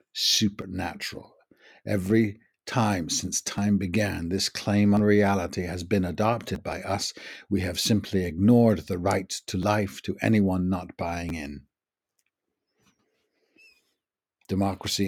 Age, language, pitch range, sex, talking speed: 60-79, English, 95-115 Hz, male, 115 wpm